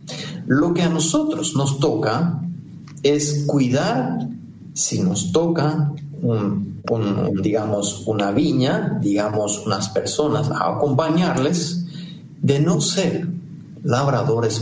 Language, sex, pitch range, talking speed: Spanish, male, 110-160 Hz, 105 wpm